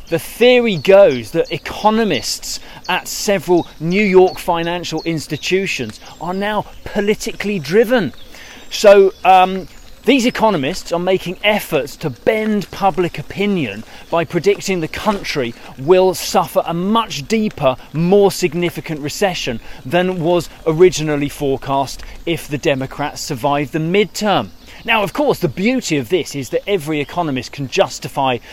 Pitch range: 140-195 Hz